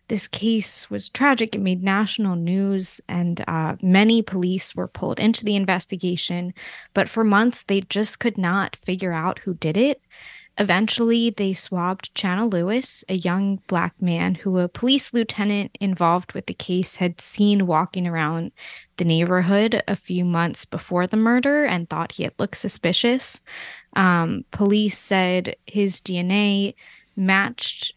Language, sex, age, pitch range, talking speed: English, female, 20-39, 180-220 Hz, 150 wpm